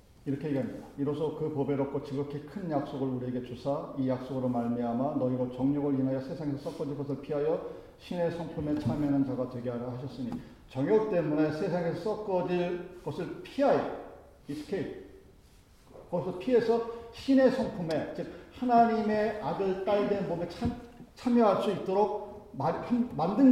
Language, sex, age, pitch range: Korean, male, 40-59, 125-170 Hz